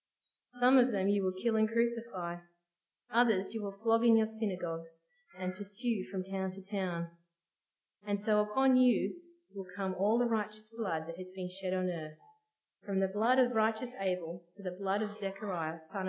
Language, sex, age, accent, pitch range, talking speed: English, female, 30-49, Australian, 170-215 Hz, 185 wpm